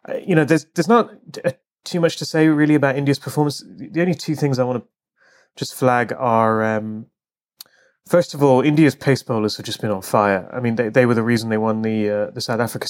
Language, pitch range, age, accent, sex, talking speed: English, 115-140 Hz, 30-49, British, male, 230 wpm